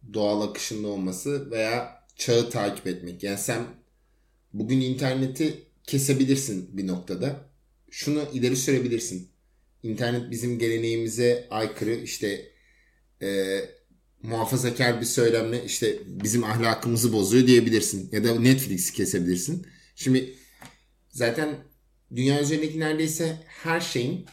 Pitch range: 110-140 Hz